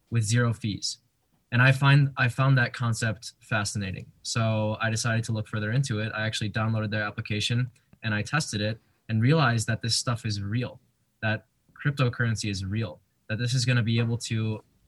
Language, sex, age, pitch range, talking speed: English, male, 20-39, 105-120 Hz, 190 wpm